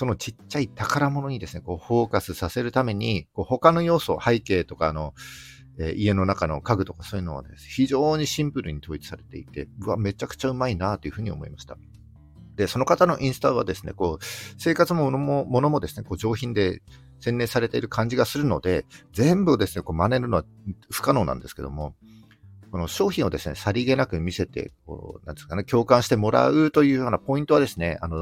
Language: Japanese